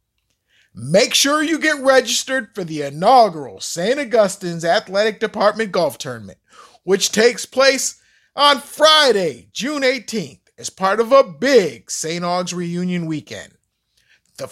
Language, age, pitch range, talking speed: English, 50-69, 160-230 Hz, 130 wpm